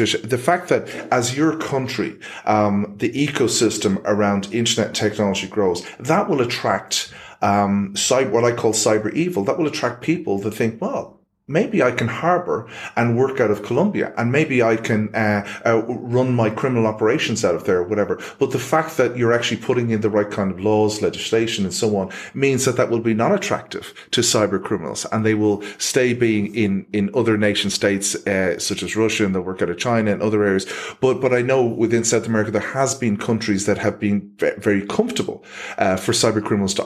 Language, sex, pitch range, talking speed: English, male, 100-120 Hz, 205 wpm